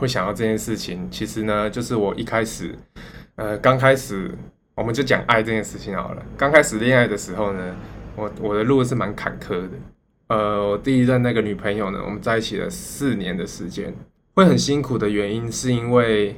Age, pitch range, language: 20-39, 100-120 Hz, Chinese